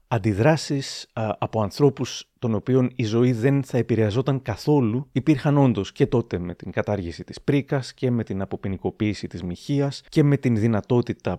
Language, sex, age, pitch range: Greek, male, 30-49, 105-135 Hz